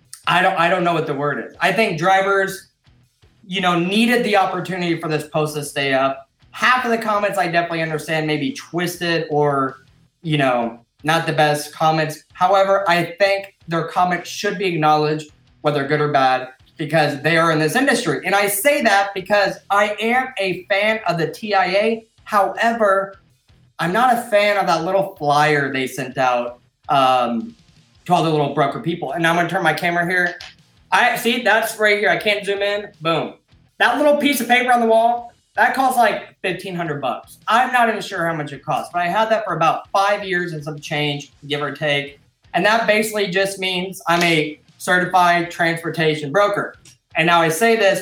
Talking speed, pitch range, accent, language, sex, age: 195 wpm, 150-200 Hz, American, English, male, 20-39